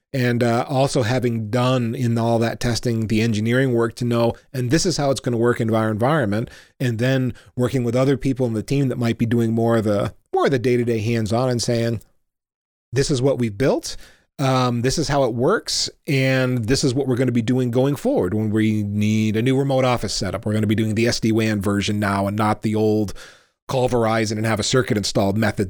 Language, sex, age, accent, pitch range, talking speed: English, male, 30-49, American, 110-130 Hz, 240 wpm